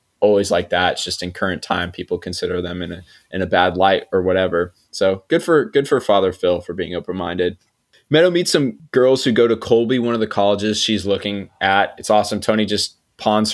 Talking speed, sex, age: 215 wpm, male, 20-39